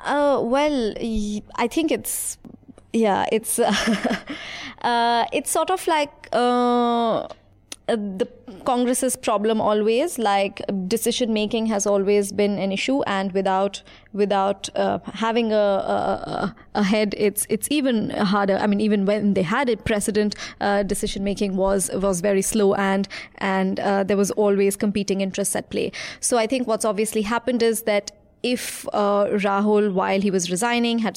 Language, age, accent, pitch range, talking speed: English, 20-39, Indian, 195-225 Hz, 155 wpm